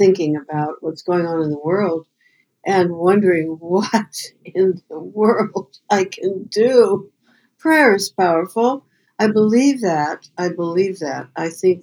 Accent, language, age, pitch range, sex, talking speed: American, English, 60-79, 165-205 Hz, female, 140 wpm